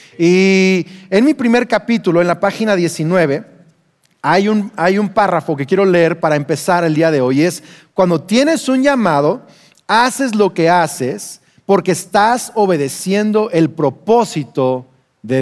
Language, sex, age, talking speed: Spanish, male, 40-59, 150 wpm